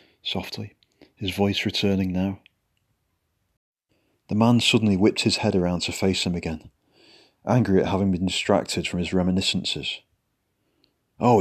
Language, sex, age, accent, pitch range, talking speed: English, male, 40-59, British, 90-110 Hz, 130 wpm